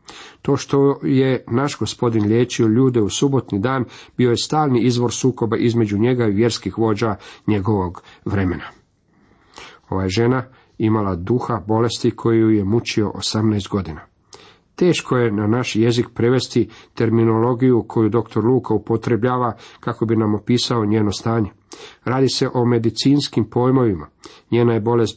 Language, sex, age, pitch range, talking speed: Croatian, male, 50-69, 105-125 Hz, 135 wpm